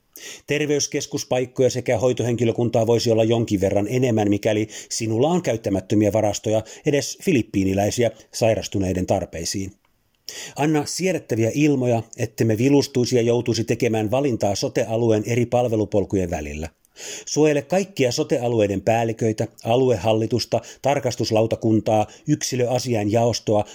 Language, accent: Finnish, native